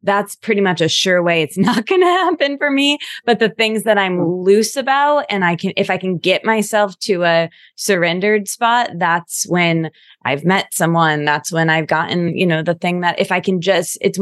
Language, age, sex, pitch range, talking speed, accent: English, 20-39, female, 165-205 Hz, 215 wpm, American